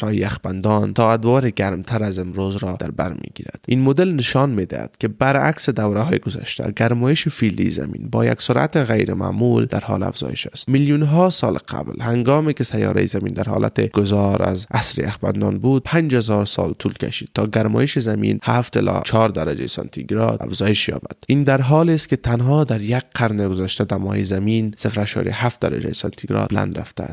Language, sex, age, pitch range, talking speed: Persian, male, 30-49, 95-125 Hz, 170 wpm